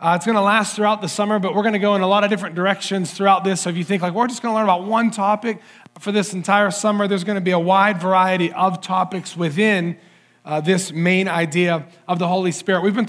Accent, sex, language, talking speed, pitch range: American, male, English, 265 wpm, 180-205 Hz